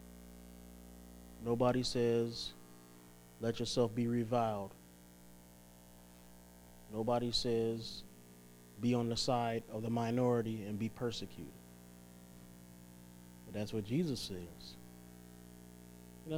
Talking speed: 90 wpm